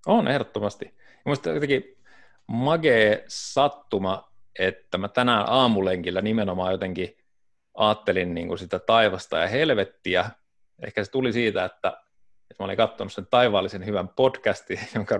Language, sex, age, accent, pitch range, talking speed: Finnish, male, 30-49, native, 95-110 Hz, 125 wpm